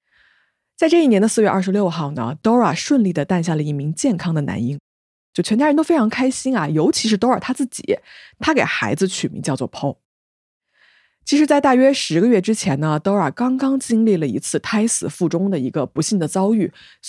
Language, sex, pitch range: Chinese, female, 165-250 Hz